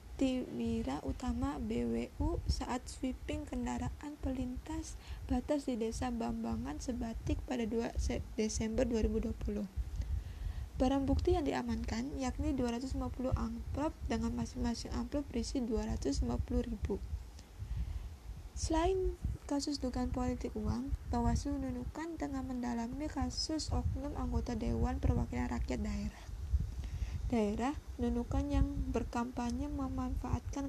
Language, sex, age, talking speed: Indonesian, female, 20-39, 100 wpm